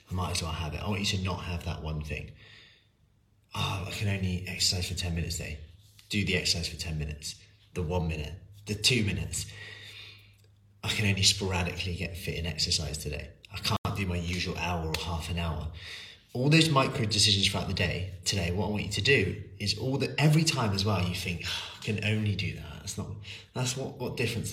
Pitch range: 85-105 Hz